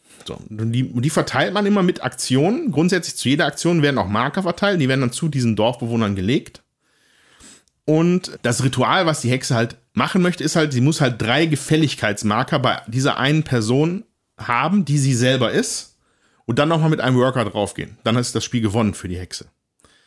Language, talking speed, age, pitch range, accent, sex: German, 195 wpm, 40-59, 110-150 Hz, German, male